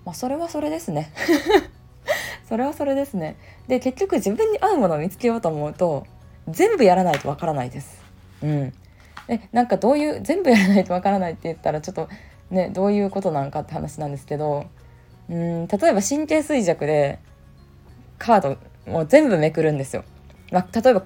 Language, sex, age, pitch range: Japanese, female, 20-39, 145-215 Hz